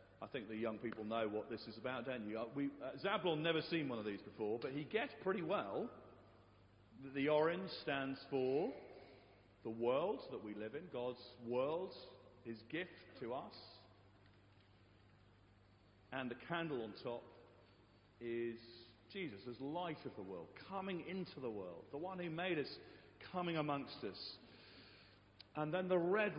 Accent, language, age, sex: British, English, 40-59, male